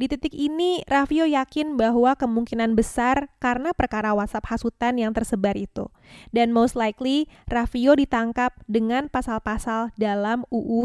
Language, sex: Indonesian, female